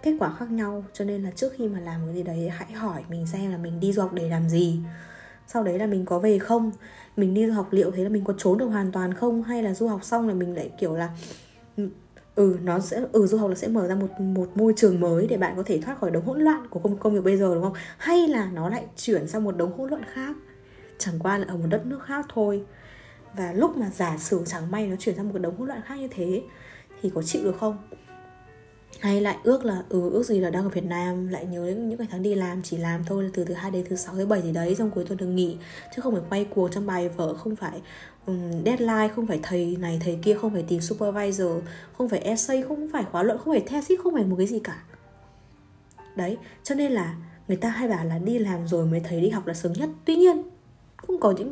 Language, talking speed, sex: Vietnamese, 270 wpm, female